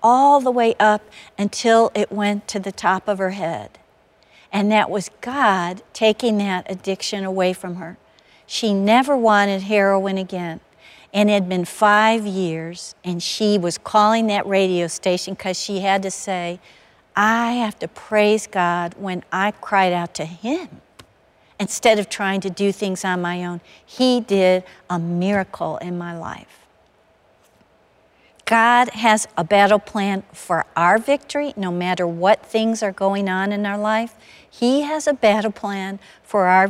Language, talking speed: English, 160 wpm